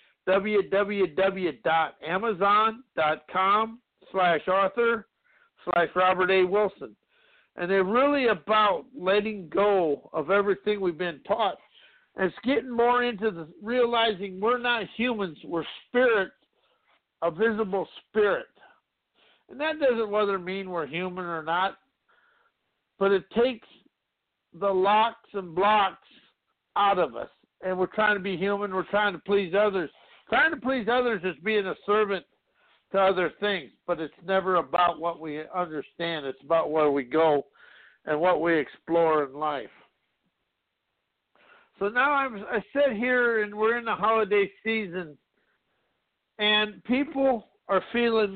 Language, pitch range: English, 180-225 Hz